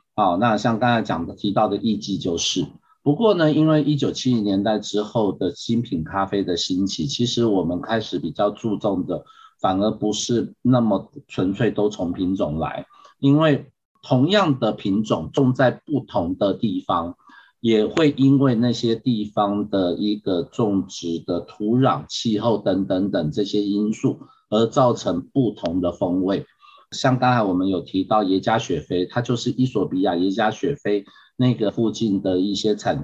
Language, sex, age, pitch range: Chinese, male, 50-69, 105-130 Hz